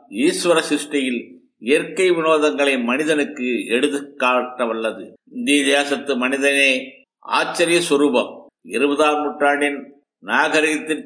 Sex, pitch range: male, 140-165 Hz